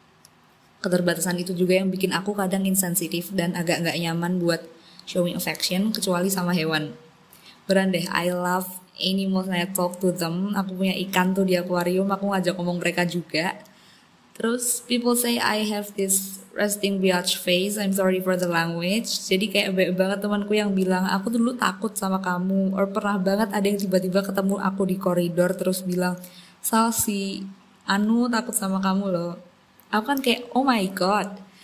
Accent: native